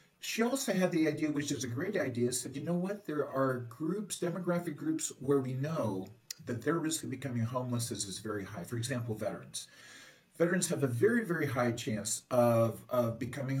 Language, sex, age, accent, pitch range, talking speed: English, male, 50-69, American, 125-180 Hz, 200 wpm